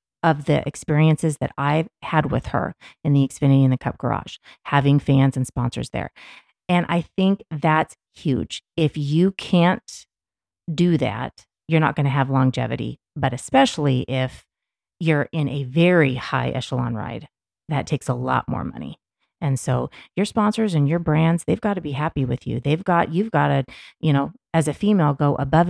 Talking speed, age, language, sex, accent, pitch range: 180 wpm, 30-49, English, female, American, 135-165 Hz